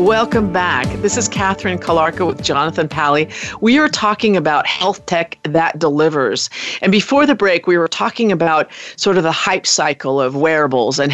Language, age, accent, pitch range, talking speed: English, 40-59, American, 160-200 Hz, 180 wpm